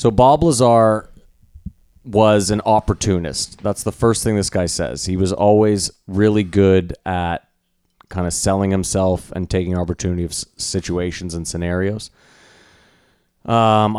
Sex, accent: male, American